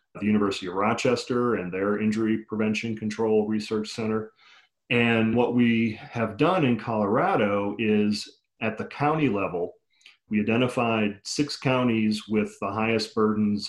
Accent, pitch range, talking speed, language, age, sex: American, 105-115 Hz, 135 wpm, English, 40-59, male